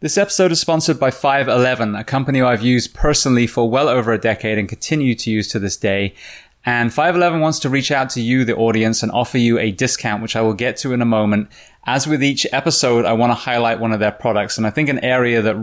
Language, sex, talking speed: English, male, 245 wpm